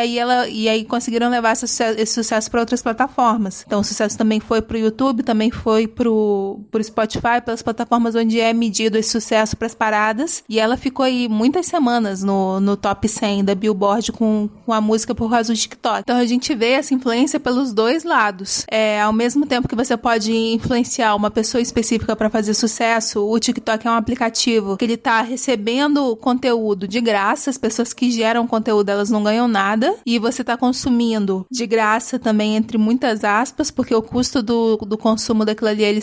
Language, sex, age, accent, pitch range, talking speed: Portuguese, female, 30-49, Brazilian, 220-245 Hz, 200 wpm